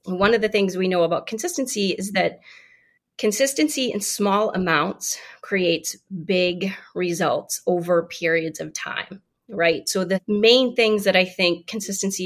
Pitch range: 175-220 Hz